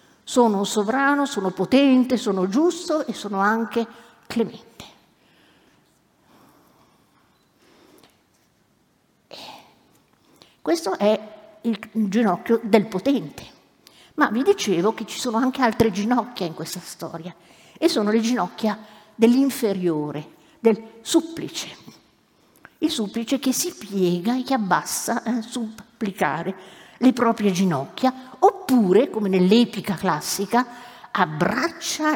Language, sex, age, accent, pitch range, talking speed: Italian, female, 50-69, native, 185-240 Hz, 100 wpm